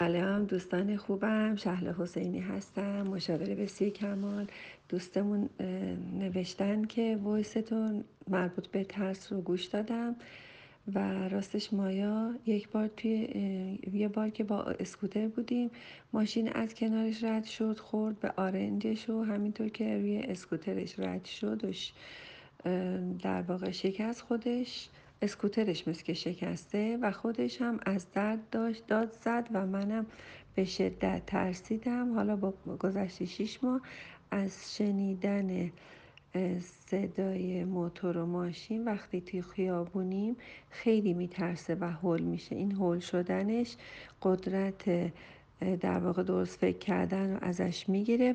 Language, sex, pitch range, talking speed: Persian, female, 180-215 Hz, 120 wpm